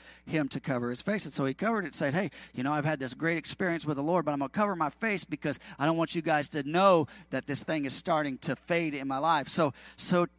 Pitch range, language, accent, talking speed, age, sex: 145-195 Hz, English, American, 275 wpm, 40-59, male